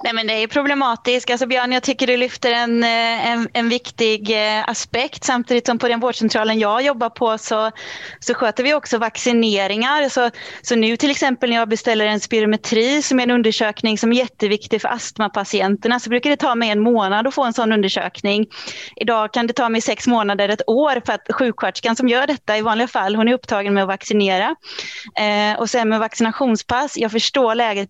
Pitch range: 220-255 Hz